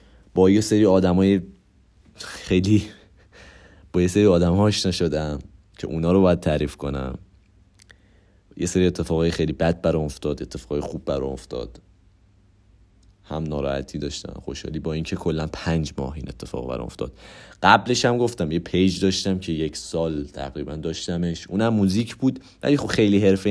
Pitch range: 80-100 Hz